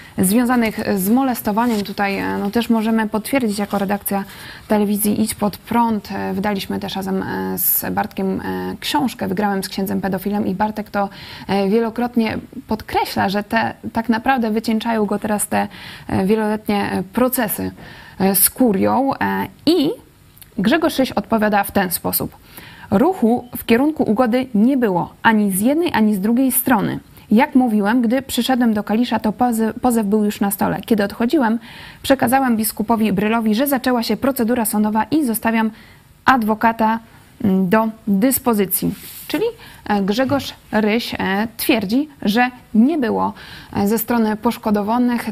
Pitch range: 205-245 Hz